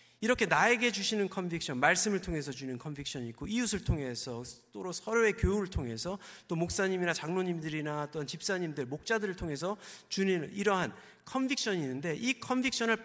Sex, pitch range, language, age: male, 120-185 Hz, Korean, 40-59